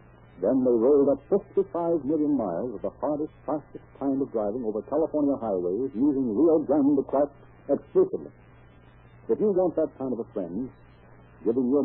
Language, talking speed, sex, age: English, 160 wpm, male, 60-79